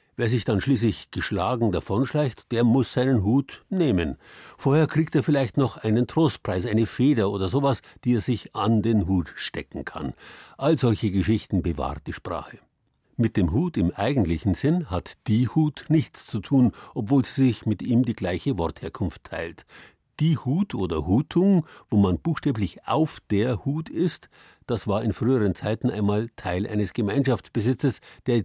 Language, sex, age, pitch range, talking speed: German, male, 50-69, 95-130 Hz, 165 wpm